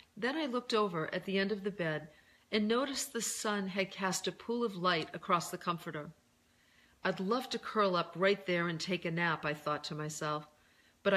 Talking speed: 210 wpm